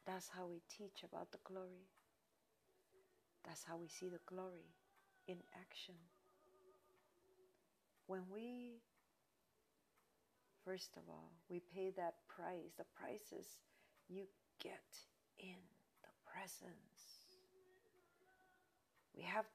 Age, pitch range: 40-59, 180-230 Hz